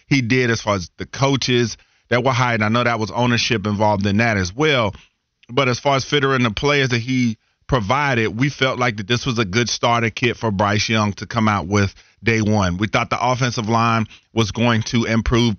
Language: English